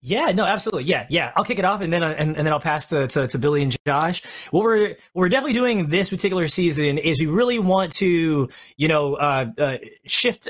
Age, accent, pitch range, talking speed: 20-39, American, 145-190 Hz, 235 wpm